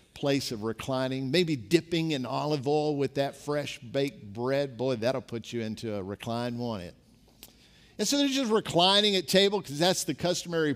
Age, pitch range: 50-69, 125-175 Hz